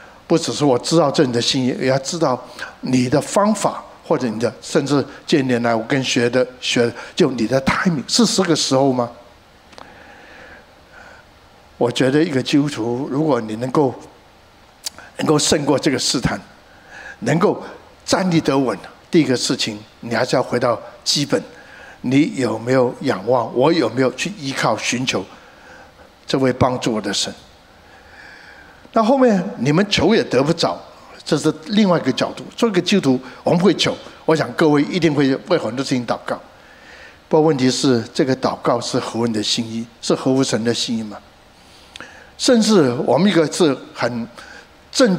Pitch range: 125-170 Hz